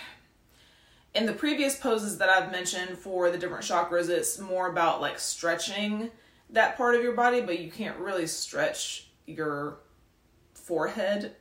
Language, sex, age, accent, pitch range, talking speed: English, female, 20-39, American, 165-210 Hz, 140 wpm